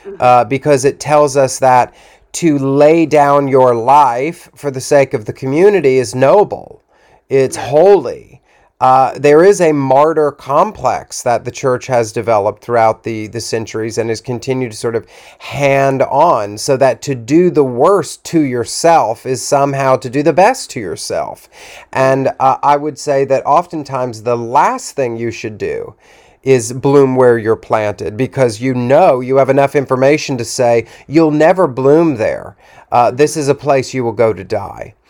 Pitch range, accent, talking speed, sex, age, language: 125-155 Hz, American, 175 wpm, male, 40-59, English